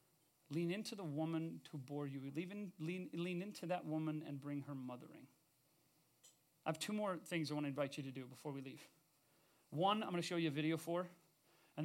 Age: 30-49